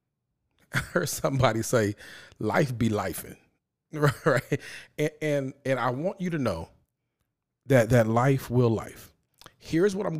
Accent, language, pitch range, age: American, English, 105-135 Hz, 40-59